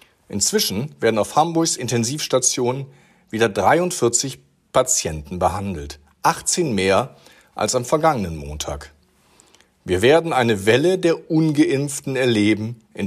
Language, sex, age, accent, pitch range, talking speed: German, male, 50-69, German, 100-150 Hz, 105 wpm